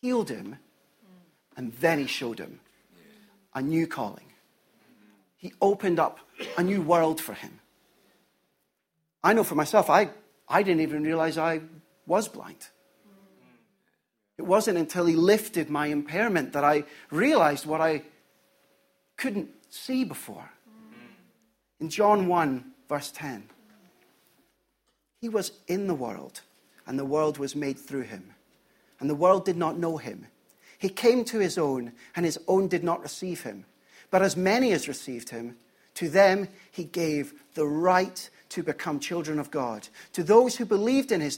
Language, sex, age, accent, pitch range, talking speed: English, male, 40-59, British, 150-205 Hz, 150 wpm